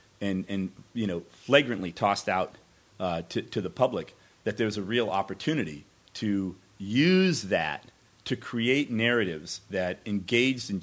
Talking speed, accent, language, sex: 145 wpm, American, English, male